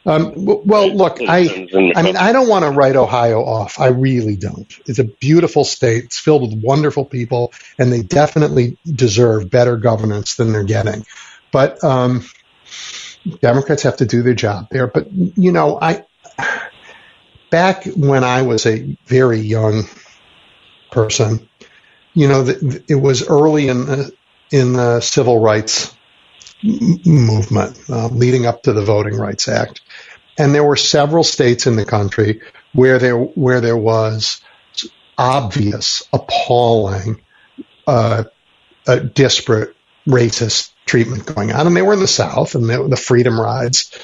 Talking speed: 150 wpm